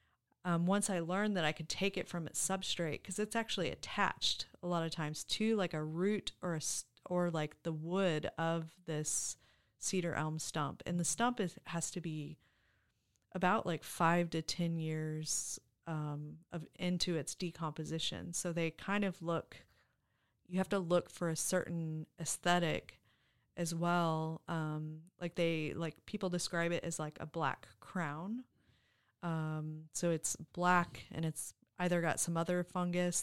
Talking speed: 165 wpm